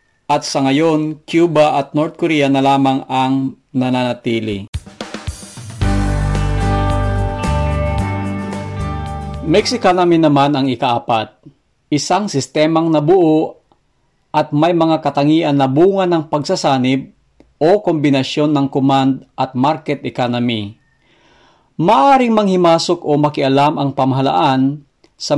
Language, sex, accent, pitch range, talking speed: English, male, Filipino, 120-155 Hz, 95 wpm